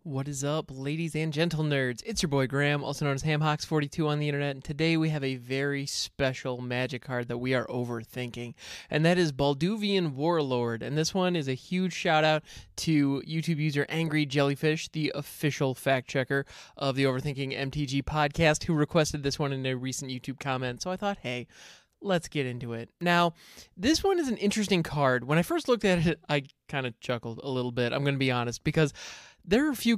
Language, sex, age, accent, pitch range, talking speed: English, male, 20-39, American, 140-195 Hz, 205 wpm